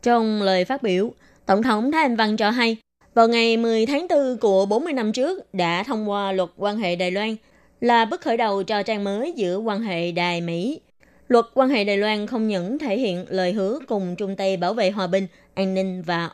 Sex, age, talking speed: female, 20-39, 225 wpm